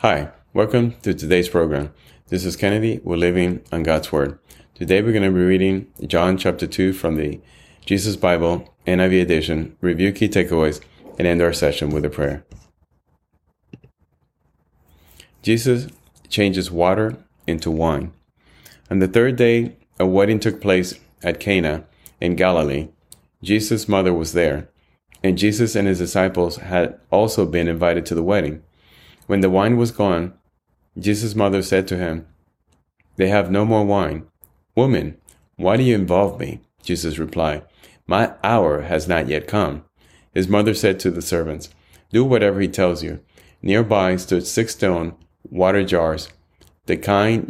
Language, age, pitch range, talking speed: English, 30-49, 80-100 Hz, 150 wpm